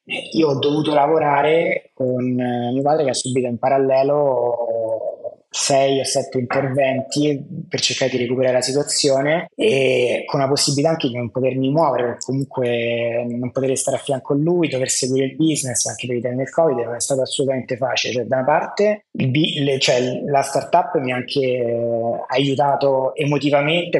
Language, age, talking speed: Italian, 20-39, 175 wpm